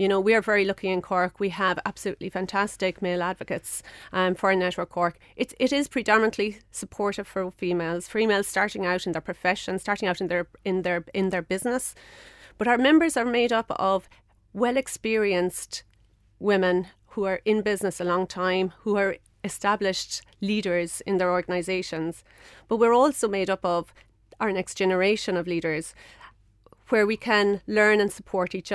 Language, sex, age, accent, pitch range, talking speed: English, female, 30-49, Irish, 180-215 Hz, 175 wpm